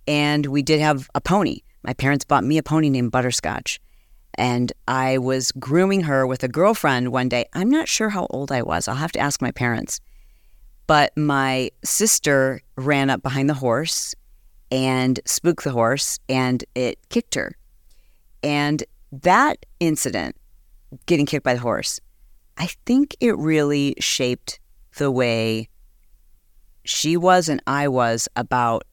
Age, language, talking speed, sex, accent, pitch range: 40-59, English, 155 wpm, female, American, 130-160 Hz